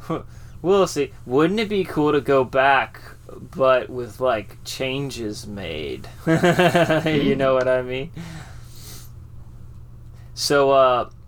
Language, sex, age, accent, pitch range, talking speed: English, male, 20-39, American, 115-140 Hz, 110 wpm